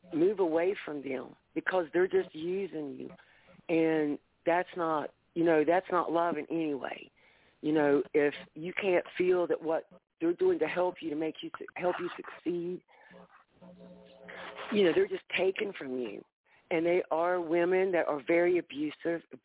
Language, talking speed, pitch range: English, 165 wpm, 155-185 Hz